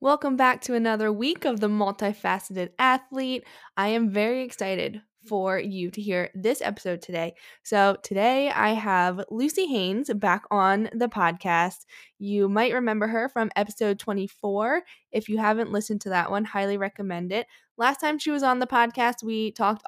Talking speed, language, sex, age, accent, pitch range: 170 wpm, English, female, 10-29, American, 190-240 Hz